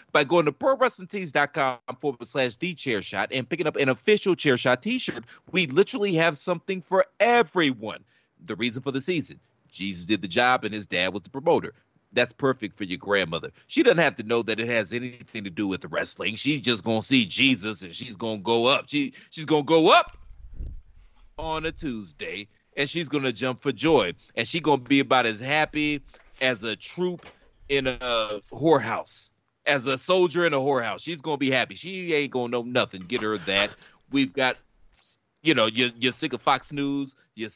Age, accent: 40-59, American